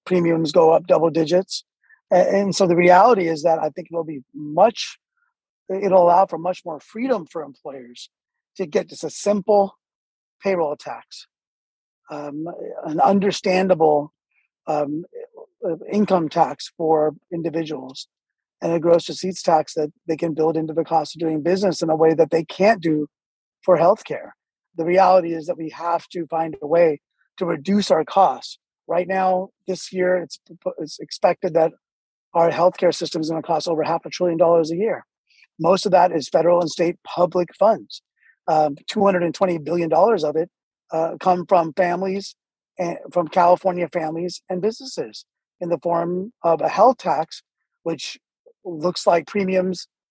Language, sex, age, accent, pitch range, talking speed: English, male, 30-49, American, 165-190 Hz, 160 wpm